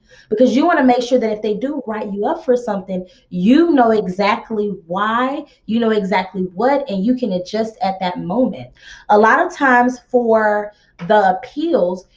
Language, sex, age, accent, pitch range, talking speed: English, female, 20-39, American, 205-265 Hz, 180 wpm